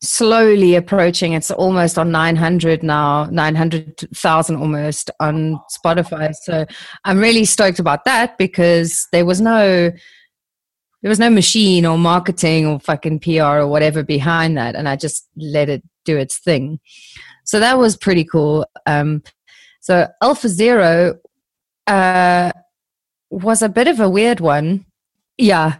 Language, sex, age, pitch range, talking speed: English, female, 30-49, 150-185 Hz, 140 wpm